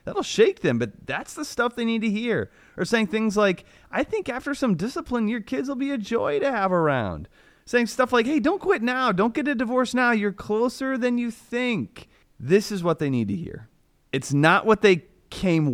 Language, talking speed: English, 220 wpm